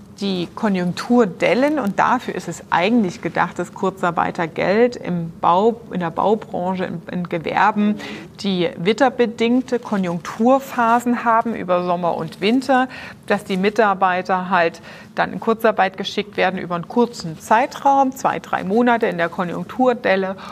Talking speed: 130 wpm